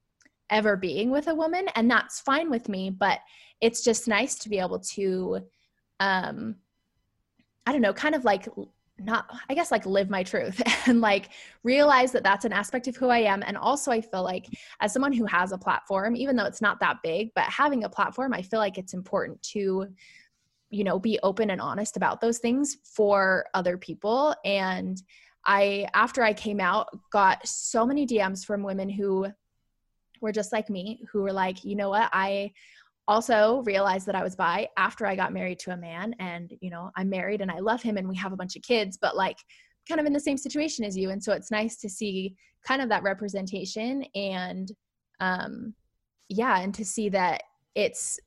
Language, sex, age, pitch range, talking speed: English, female, 20-39, 190-230 Hz, 200 wpm